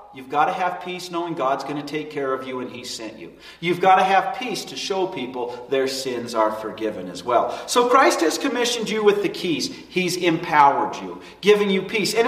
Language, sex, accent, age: English, male, American, 40-59